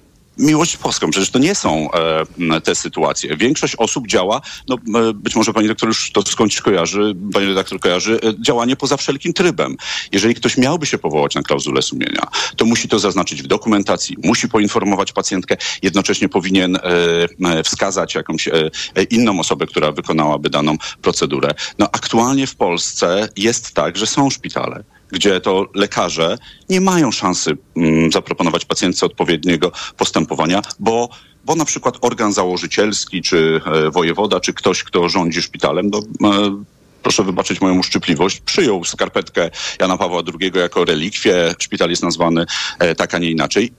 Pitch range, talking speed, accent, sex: 85-120 Hz, 155 wpm, native, male